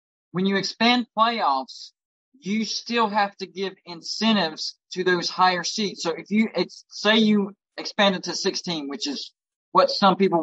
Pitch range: 160-205 Hz